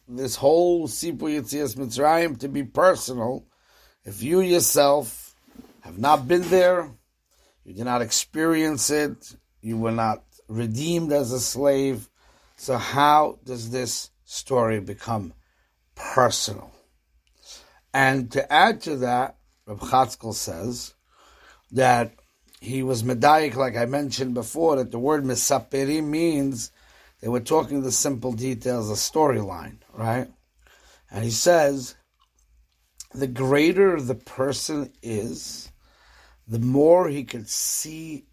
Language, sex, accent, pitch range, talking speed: English, male, American, 115-145 Hz, 120 wpm